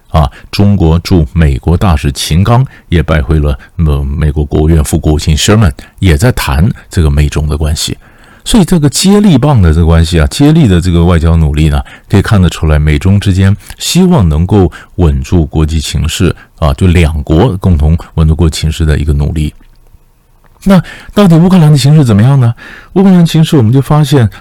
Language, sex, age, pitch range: Chinese, male, 50-69, 80-120 Hz